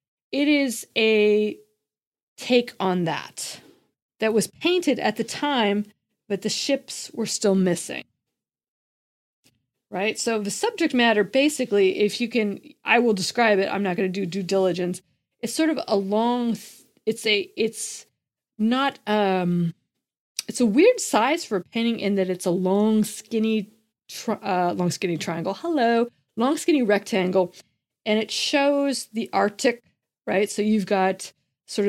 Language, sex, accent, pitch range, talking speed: English, female, American, 185-230 Hz, 150 wpm